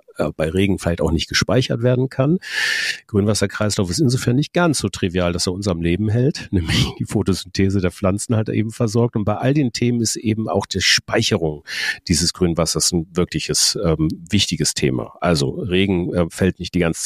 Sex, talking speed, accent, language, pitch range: male, 185 wpm, German, German, 85-110 Hz